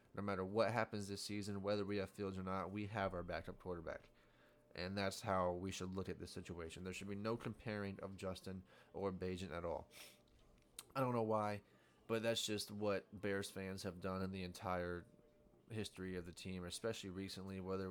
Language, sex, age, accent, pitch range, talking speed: English, male, 20-39, American, 95-110 Hz, 200 wpm